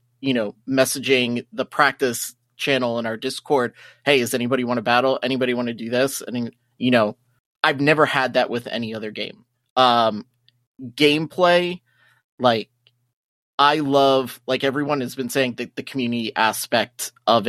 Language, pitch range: English, 120-135 Hz